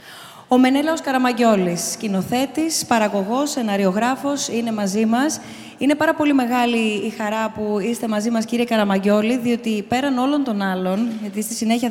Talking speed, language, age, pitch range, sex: 145 wpm, Greek, 20-39, 205-240 Hz, female